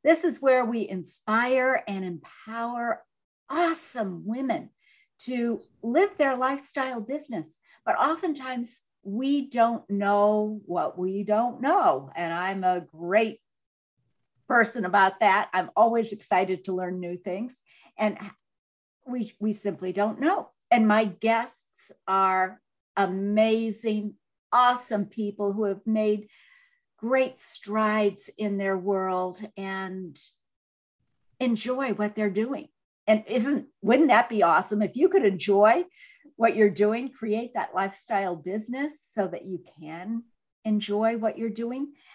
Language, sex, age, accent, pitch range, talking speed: English, female, 50-69, American, 200-255 Hz, 125 wpm